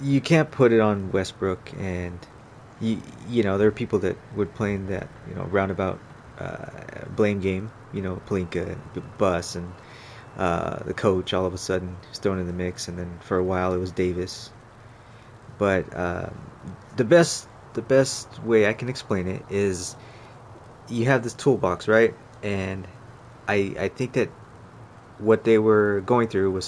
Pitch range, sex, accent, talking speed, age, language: 95-120 Hz, male, American, 170 wpm, 30-49, English